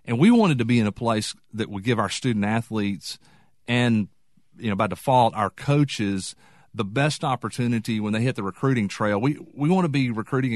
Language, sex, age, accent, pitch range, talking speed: English, male, 40-59, American, 100-120 Hz, 205 wpm